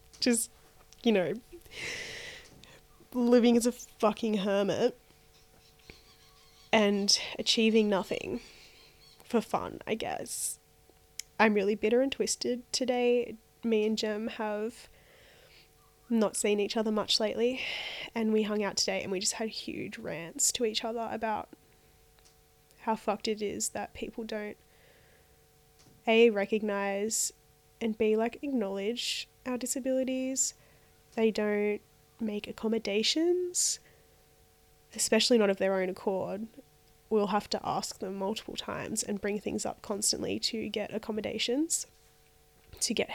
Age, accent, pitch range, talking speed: 10-29, Australian, 210-245 Hz, 120 wpm